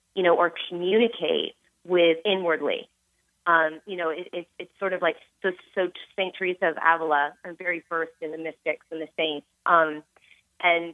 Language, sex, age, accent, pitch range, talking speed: English, female, 30-49, American, 160-195 Hz, 175 wpm